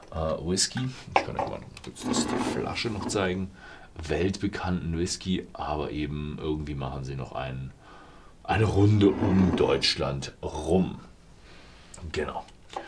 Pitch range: 75-105 Hz